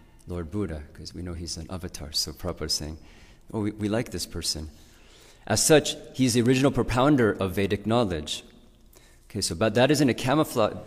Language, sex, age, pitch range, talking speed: English, male, 40-59, 95-125 Hz, 180 wpm